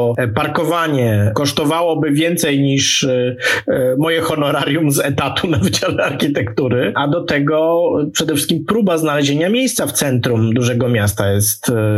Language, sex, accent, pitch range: Polish, male, native, 125-170 Hz